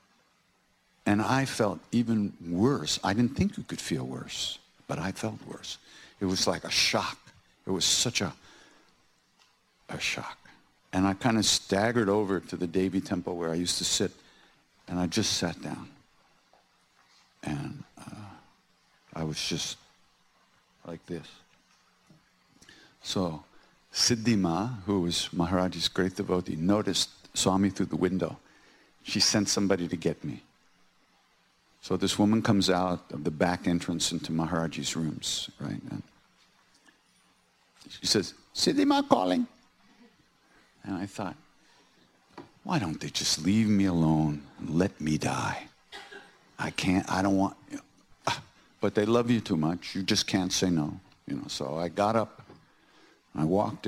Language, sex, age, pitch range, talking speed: English, male, 60-79, 85-110 Hz, 150 wpm